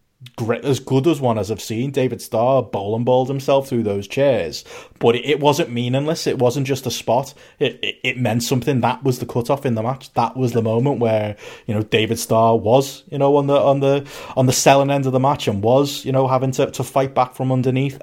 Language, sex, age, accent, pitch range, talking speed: English, male, 30-49, British, 115-140 Hz, 245 wpm